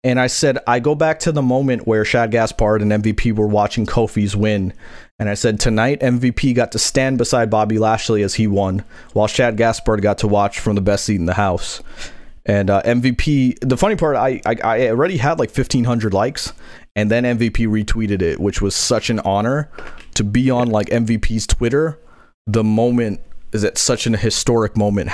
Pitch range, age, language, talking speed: 105-120 Hz, 30-49, English, 200 wpm